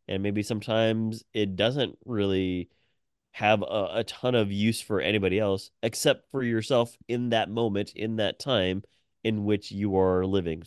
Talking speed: 165 wpm